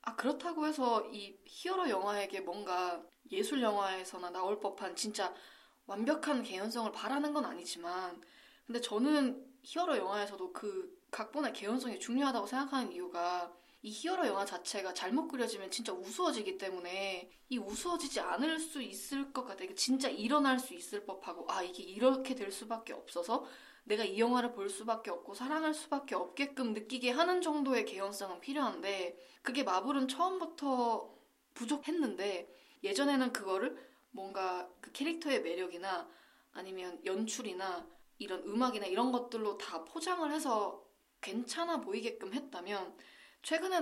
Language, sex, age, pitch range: Korean, female, 20-39, 195-280 Hz